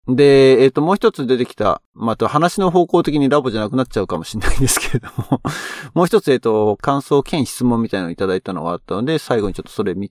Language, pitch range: Japanese, 95-130 Hz